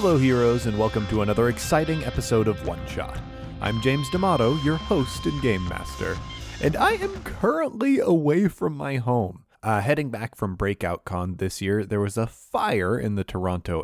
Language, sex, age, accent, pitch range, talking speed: English, male, 30-49, American, 95-130 Hz, 180 wpm